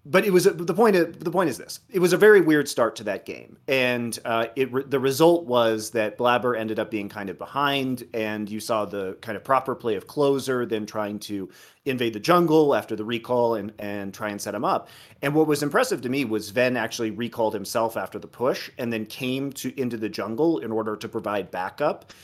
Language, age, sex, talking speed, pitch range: English, 30-49, male, 225 wpm, 105-140 Hz